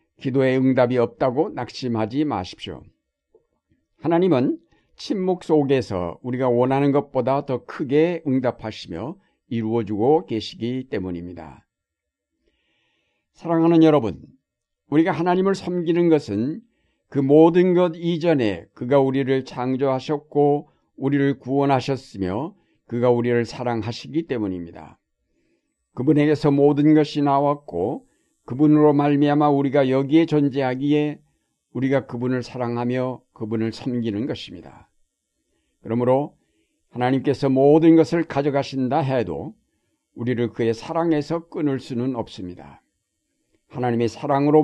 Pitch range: 115-150 Hz